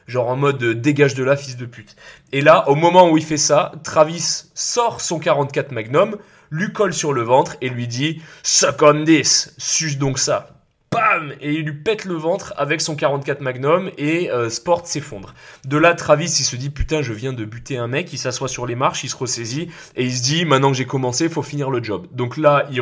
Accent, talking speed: French, 235 wpm